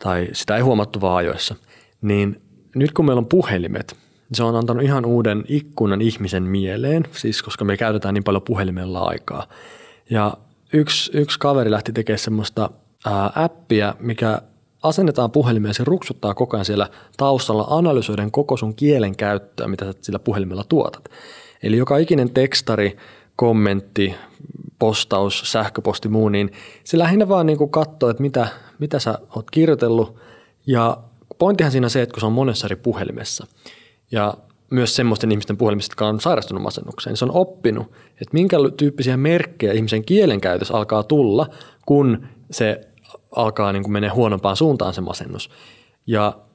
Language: Finnish